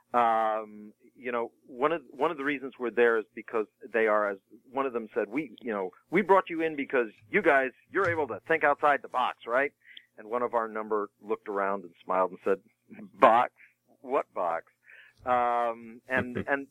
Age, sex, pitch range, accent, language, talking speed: 40-59, male, 110-135 Hz, American, English, 200 wpm